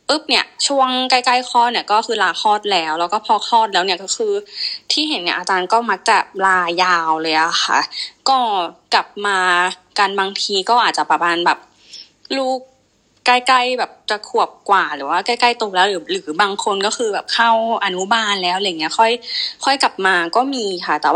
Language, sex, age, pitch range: Thai, female, 20-39, 200-270 Hz